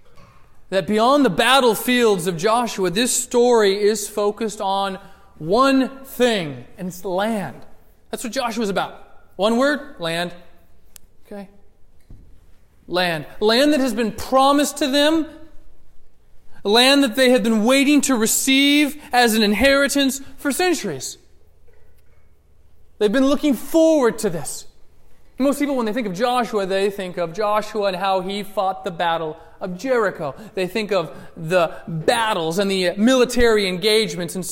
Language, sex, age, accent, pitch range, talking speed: English, male, 30-49, American, 175-245 Hz, 140 wpm